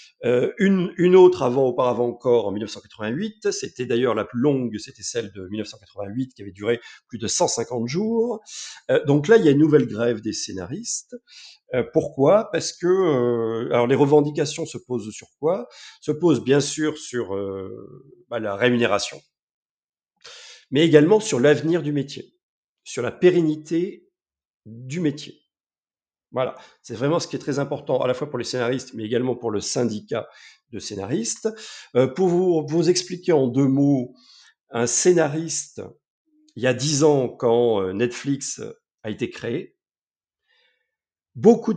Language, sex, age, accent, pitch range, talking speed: French, male, 40-59, French, 120-180 Hz, 160 wpm